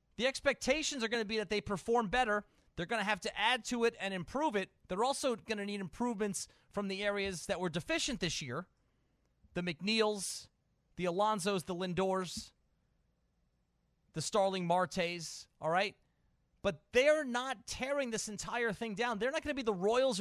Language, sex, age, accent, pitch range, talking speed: English, male, 30-49, American, 170-230 Hz, 180 wpm